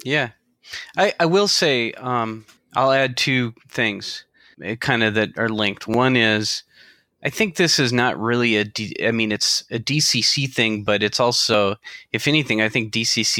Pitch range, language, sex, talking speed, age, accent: 105-120 Hz, English, male, 170 wpm, 30-49, American